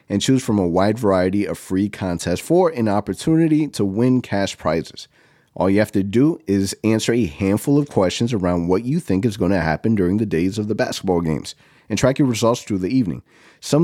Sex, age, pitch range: male, 30-49, 95-125 Hz